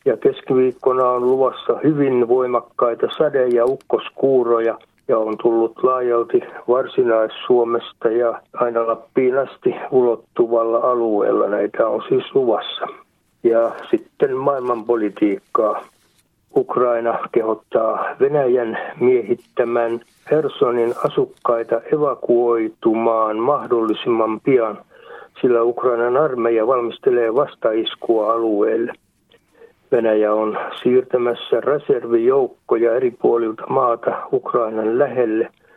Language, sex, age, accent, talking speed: Finnish, male, 60-79, native, 85 wpm